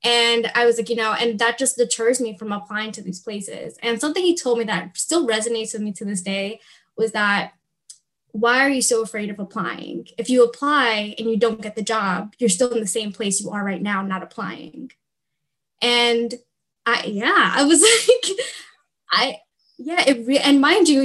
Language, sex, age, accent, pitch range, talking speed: English, female, 10-29, American, 210-255 Hz, 200 wpm